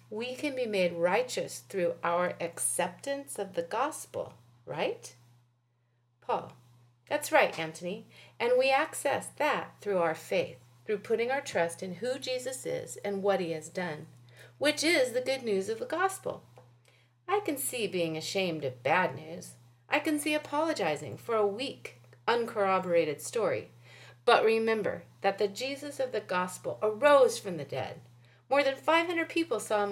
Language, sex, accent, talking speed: English, female, American, 160 wpm